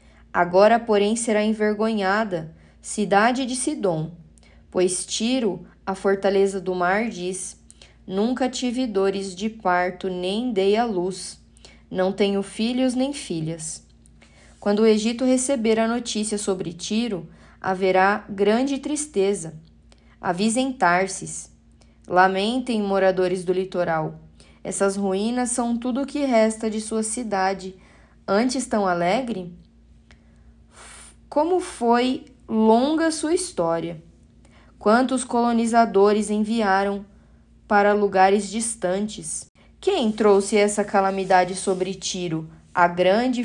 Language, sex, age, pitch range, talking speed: Portuguese, female, 10-29, 185-220 Hz, 105 wpm